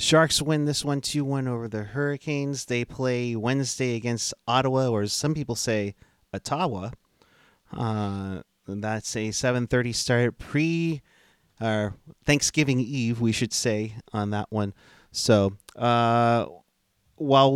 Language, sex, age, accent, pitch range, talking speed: English, male, 30-49, American, 110-140 Hz, 125 wpm